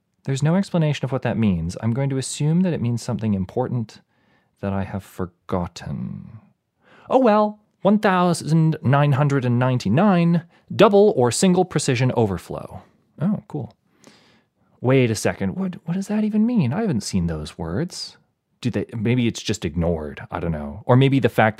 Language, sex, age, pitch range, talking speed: English, male, 30-49, 105-165 Hz, 170 wpm